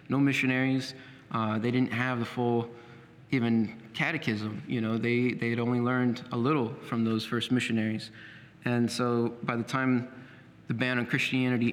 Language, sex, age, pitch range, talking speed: English, male, 20-39, 115-130 Hz, 165 wpm